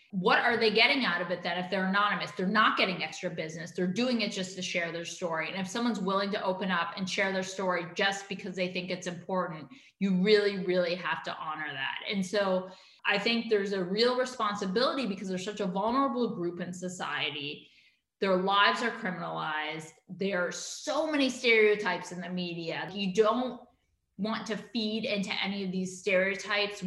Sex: female